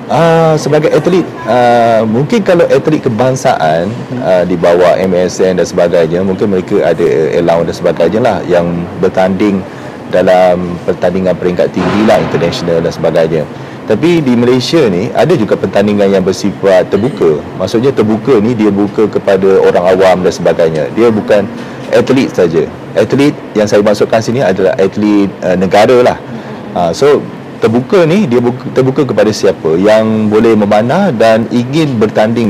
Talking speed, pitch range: 150 wpm, 95-115 Hz